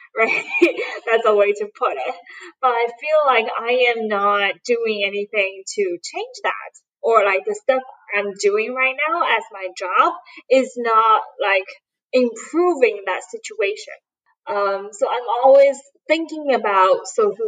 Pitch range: 215-335 Hz